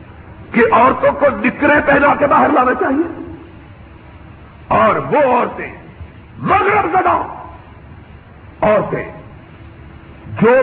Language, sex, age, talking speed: Urdu, male, 50-69, 90 wpm